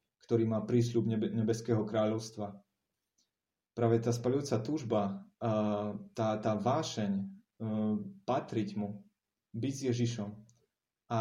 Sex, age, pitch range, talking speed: male, 30-49, 105-120 Hz, 95 wpm